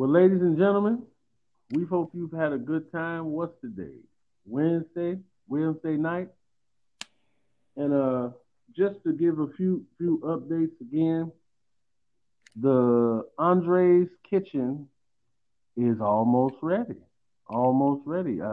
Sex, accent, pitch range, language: male, American, 125-160 Hz, English